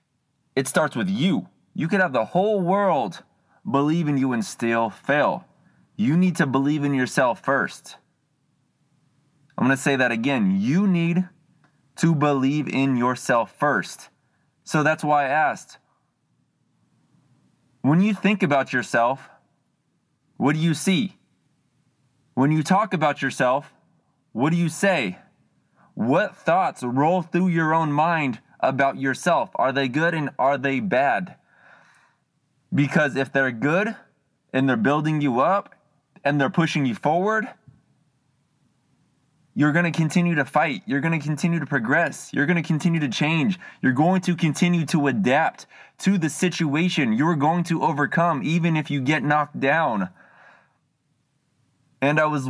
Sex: male